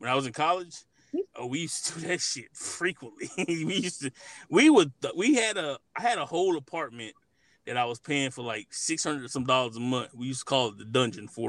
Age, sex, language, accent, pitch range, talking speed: 20-39, male, English, American, 130-165 Hz, 240 wpm